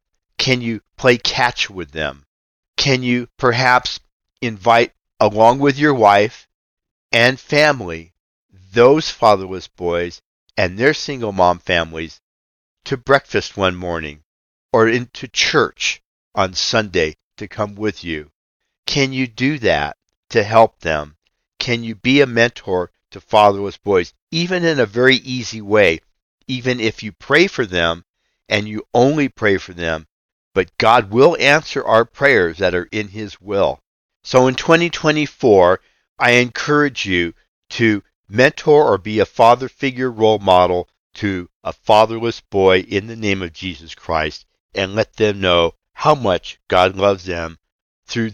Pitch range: 90-120 Hz